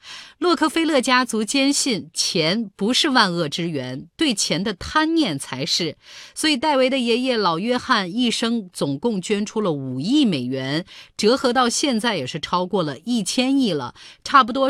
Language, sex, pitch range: Chinese, female, 180-260 Hz